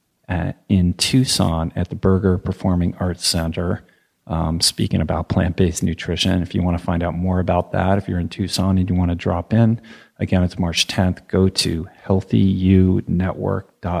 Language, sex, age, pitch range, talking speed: English, male, 40-59, 90-100 Hz, 175 wpm